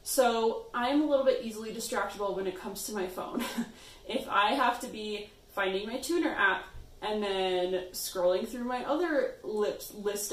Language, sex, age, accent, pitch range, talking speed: English, female, 20-39, American, 195-270 Hz, 170 wpm